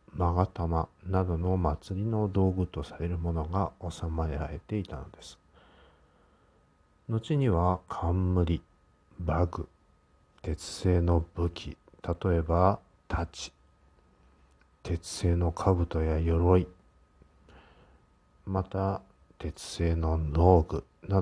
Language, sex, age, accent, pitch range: Japanese, male, 50-69, native, 80-95 Hz